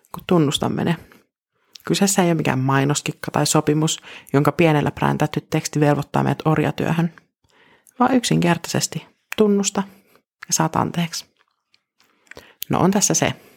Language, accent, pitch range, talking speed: Finnish, native, 155-195 Hz, 120 wpm